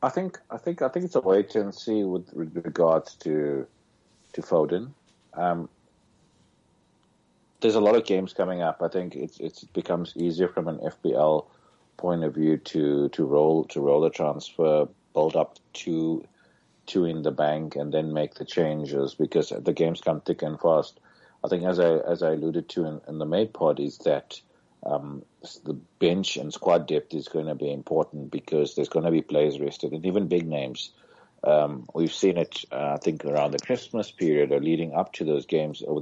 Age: 50-69